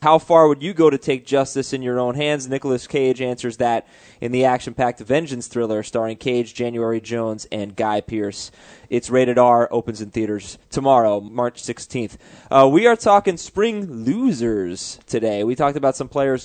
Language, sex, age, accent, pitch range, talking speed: English, male, 20-39, American, 115-145 Hz, 180 wpm